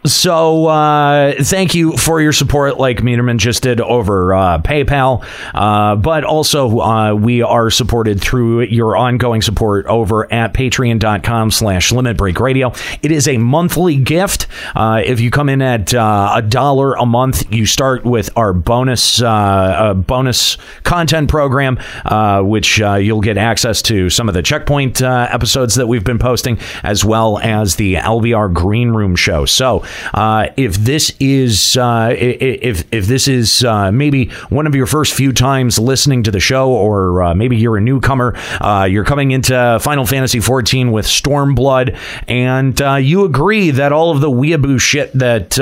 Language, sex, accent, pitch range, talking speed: English, male, American, 110-135 Hz, 165 wpm